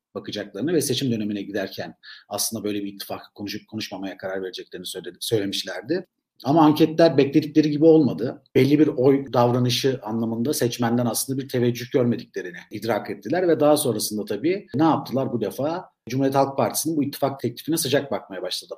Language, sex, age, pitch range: Turkish, male, 50-69, 120-150 Hz